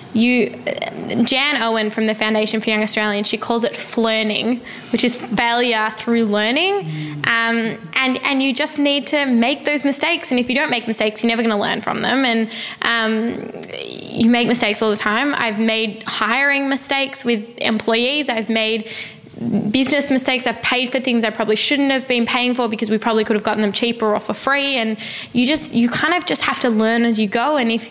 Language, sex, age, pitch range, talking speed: English, female, 10-29, 210-235 Hz, 205 wpm